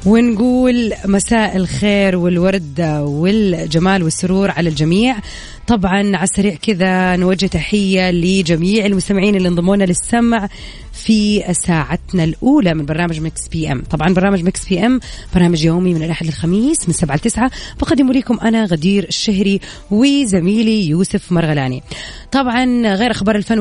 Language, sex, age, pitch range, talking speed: Arabic, female, 20-39, 175-225 Hz, 130 wpm